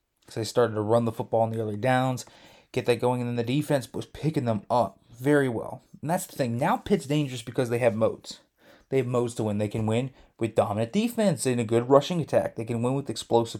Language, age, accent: English, 20-39, American